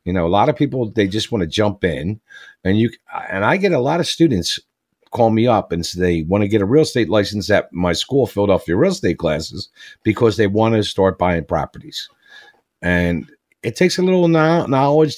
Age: 50-69